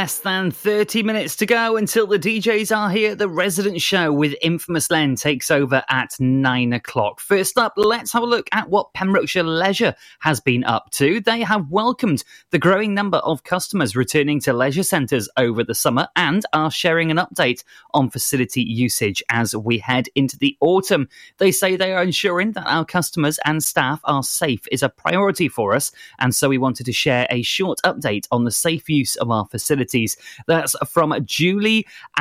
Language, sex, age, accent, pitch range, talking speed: English, male, 30-49, British, 130-185 Hz, 190 wpm